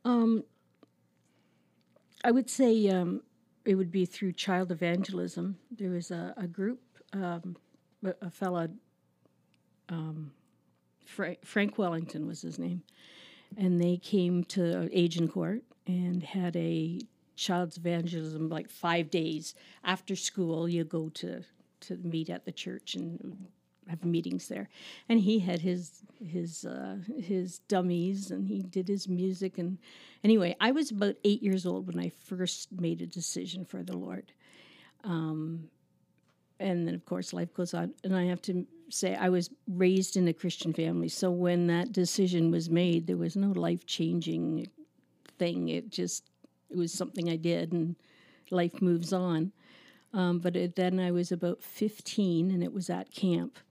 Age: 50-69